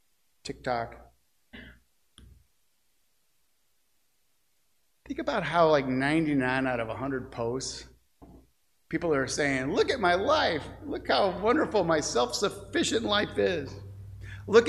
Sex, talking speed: male, 100 wpm